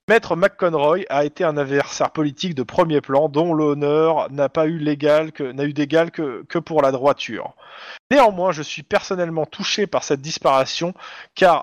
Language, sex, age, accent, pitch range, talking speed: French, male, 20-39, French, 130-170 Hz, 175 wpm